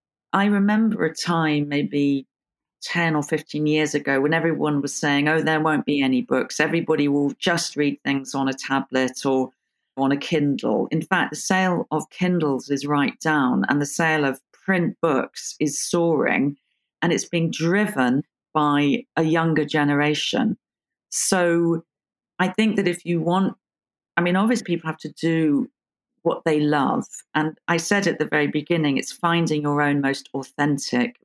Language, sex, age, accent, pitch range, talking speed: English, female, 40-59, British, 140-175 Hz, 165 wpm